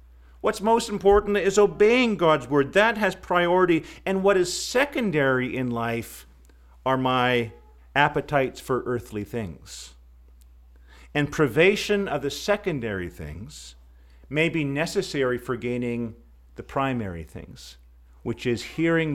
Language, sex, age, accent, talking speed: English, male, 50-69, American, 120 wpm